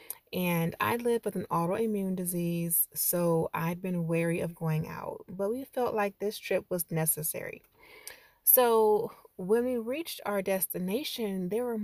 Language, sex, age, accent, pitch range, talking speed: English, female, 30-49, American, 175-235 Hz, 150 wpm